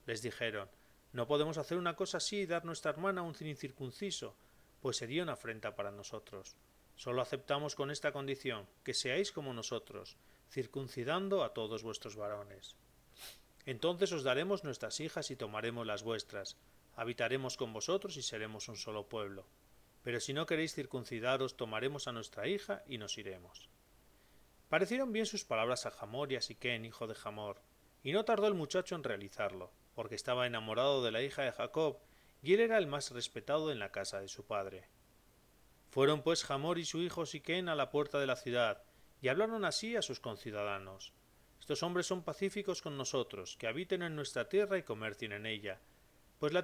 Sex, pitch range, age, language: male, 115-170 Hz, 40-59, Spanish